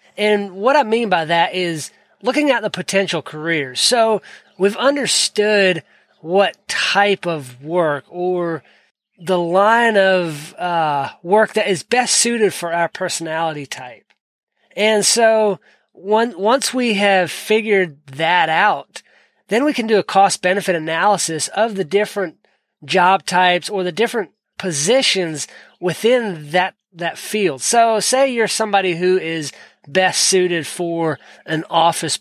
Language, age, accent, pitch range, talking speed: English, 20-39, American, 170-210 Hz, 135 wpm